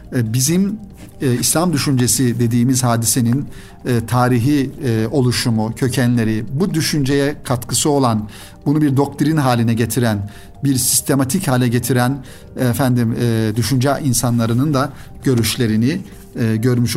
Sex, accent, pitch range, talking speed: male, native, 120-145 Hz, 115 wpm